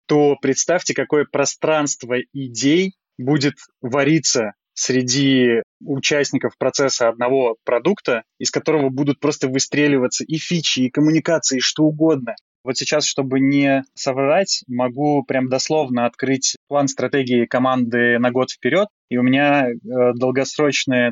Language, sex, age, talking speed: Russian, male, 20-39, 120 wpm